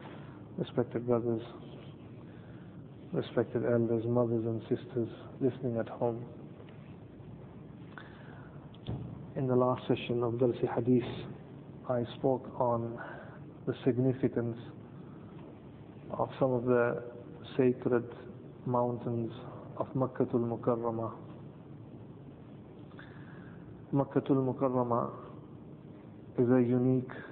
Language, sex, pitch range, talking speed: English, male, 120-135 Hz, 80 wpm